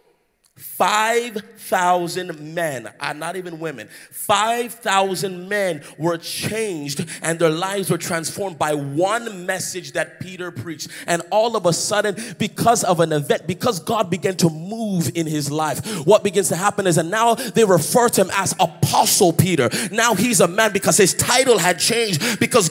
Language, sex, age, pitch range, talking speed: English, male, 30-49, 175-225 Hz, 165 wpm